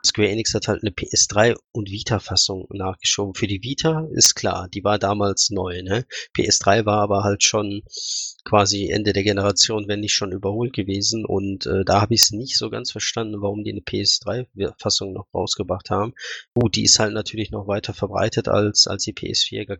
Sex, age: male, 20-39